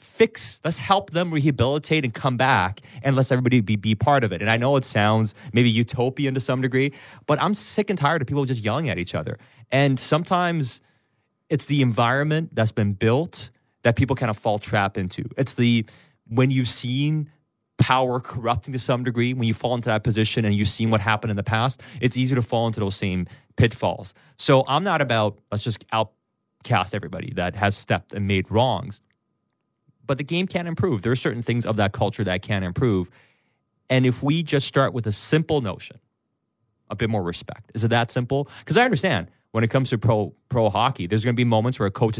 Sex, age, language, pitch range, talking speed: male, 30-49, English, 110-135 Hz, 210 wpm